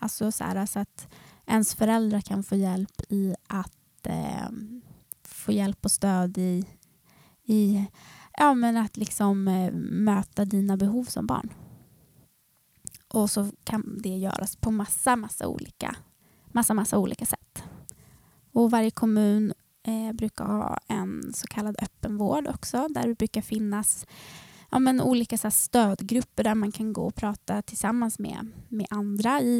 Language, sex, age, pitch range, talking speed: Swedish, female, 20-39, 205-235 Hz, 150 wpm